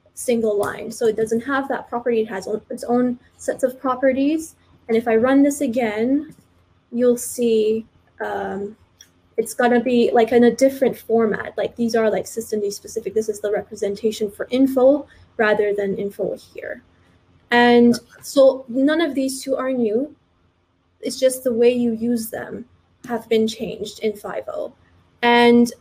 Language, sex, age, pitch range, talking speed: English, female, 20-39, 220-255 Hz, 165 wpm